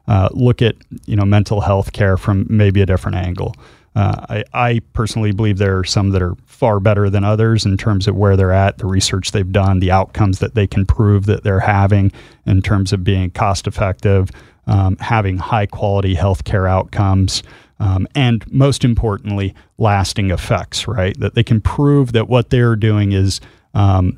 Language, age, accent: English, 30-49, American